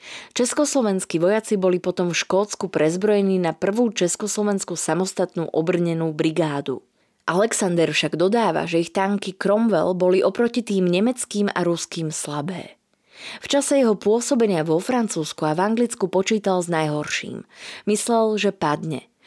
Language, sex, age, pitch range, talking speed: Slovak, female, 20-39, 170-215 Hz, 130 wpm